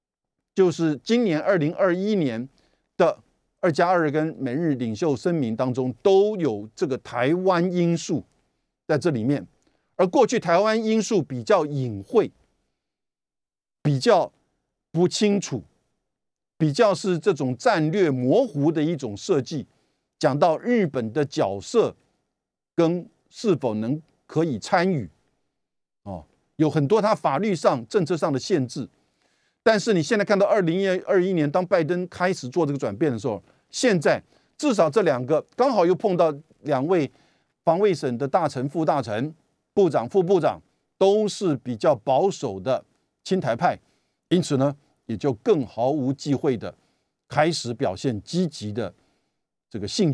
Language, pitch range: Chinese, 135-190 Hz